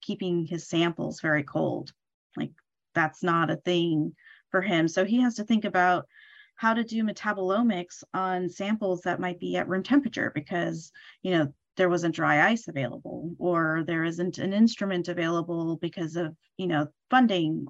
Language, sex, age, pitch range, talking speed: English, female, 30-49, 170-210 Hz, 165 wpm